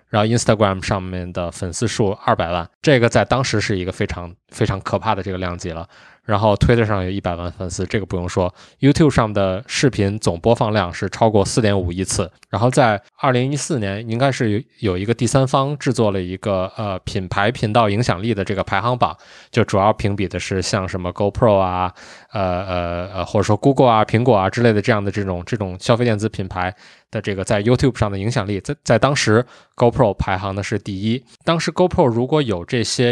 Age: 20-39